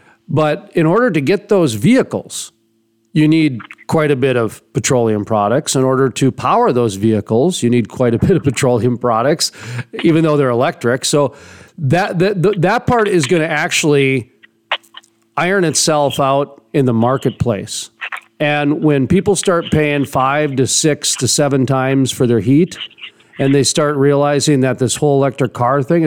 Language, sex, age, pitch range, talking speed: English, male, 40-59, 125-160 Hz, 165 wpm